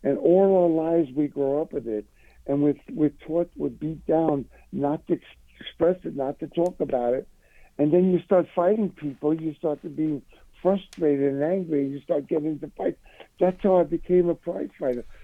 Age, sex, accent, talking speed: 60-79, male, American, 195 wpm